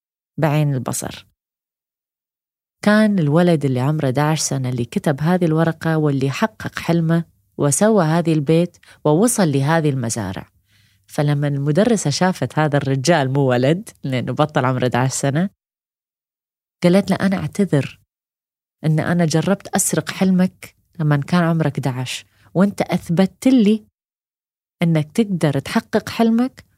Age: 30-49